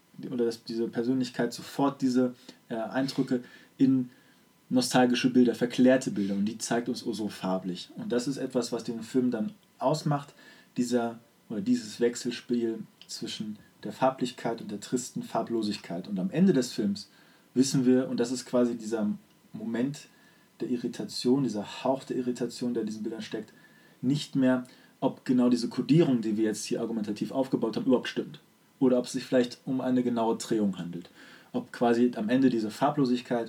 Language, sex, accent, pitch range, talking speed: German, male, German, 115-130 Hz, 170 wpm